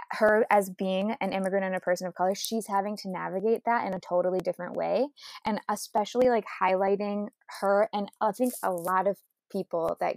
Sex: female